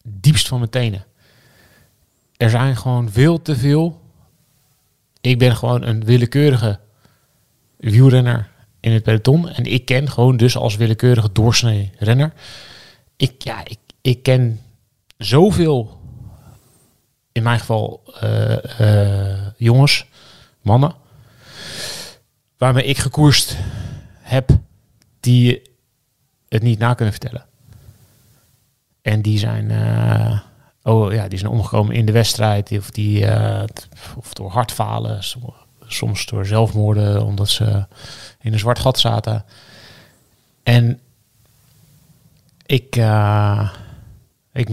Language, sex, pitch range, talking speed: Dutch, male, 110-130 Hz, 110 wpm